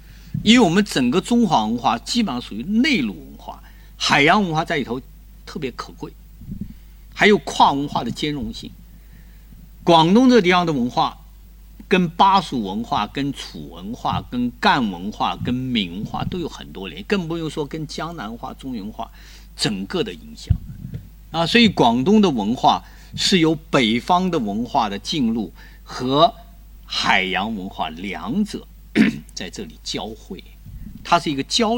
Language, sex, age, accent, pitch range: Chinese, male, 50-69, native, 145-230 Hz